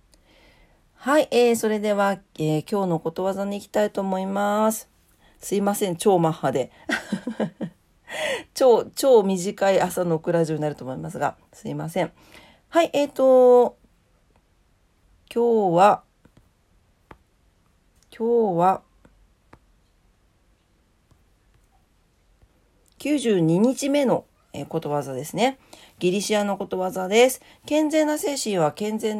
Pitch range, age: 155-225 Hz, 40-59